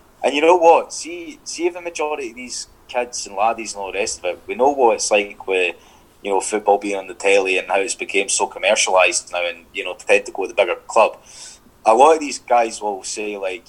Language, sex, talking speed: English, male, 245 wpm